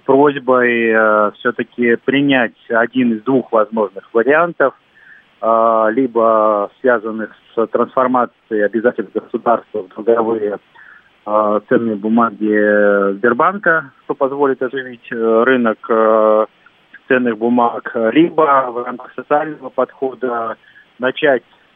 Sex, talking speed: male, 100 wpm